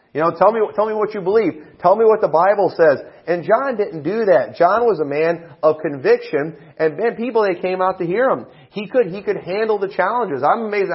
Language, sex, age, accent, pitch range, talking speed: English, male, 30-49, American, 145-205 Hz, 235 wpm